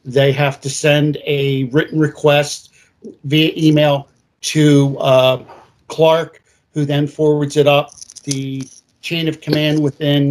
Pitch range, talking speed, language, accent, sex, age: 135-150 Hz, 130 wpm, English, American, male, 50-69